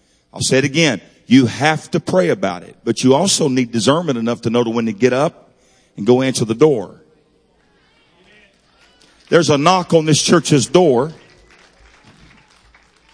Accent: American